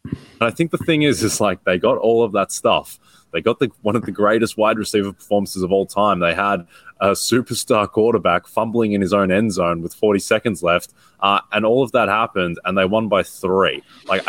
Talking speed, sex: 225 wpm, male